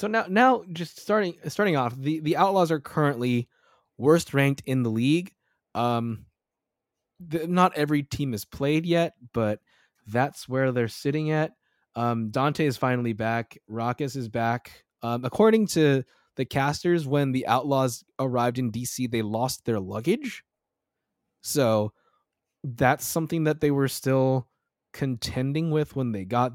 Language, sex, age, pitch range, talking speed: English, male, 20-39, 120-155 Hz, 150 wpm